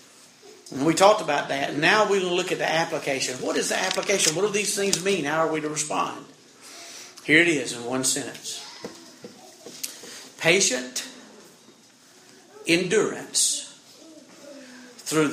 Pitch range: 150-235 Hz